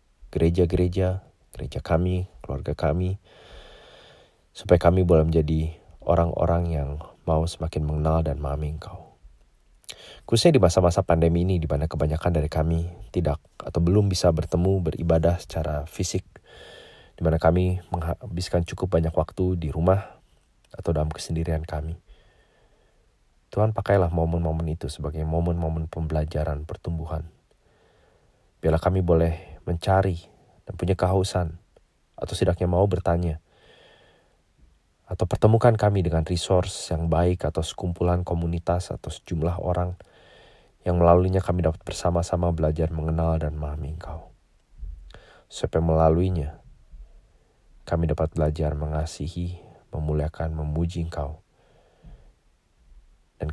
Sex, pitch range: male, 80-90 Hz